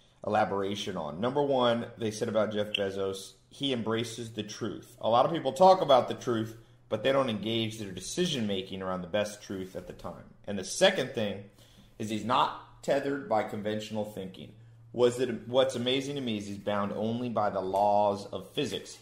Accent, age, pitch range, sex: American, 30-49, 95-120 Hz, male